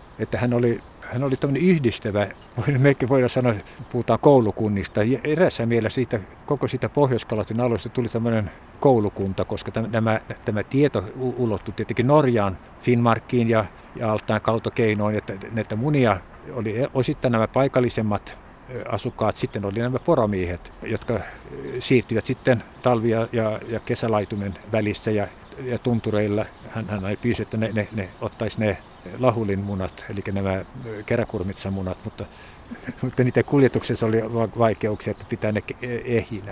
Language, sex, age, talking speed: Finnish, male, 60-79, 130 wpm